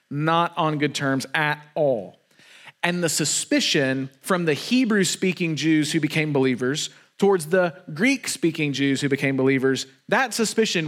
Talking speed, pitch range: 140 wpm, 150-200 Hz